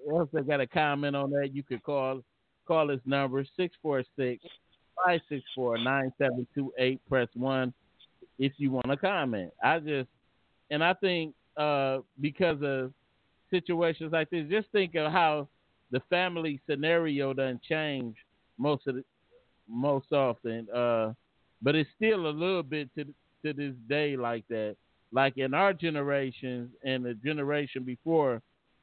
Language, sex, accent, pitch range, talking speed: English, male, American, 130-155 Hz, 135 wpm